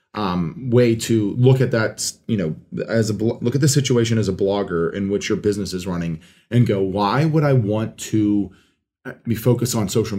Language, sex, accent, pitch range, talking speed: English, male, American, 100-125 Hz, 200 wpm